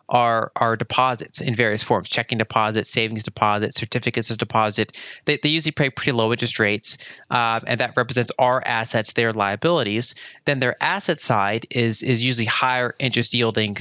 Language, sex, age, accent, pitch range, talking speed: English, male, 20-39, American, 110-130 Hz, 170 wpm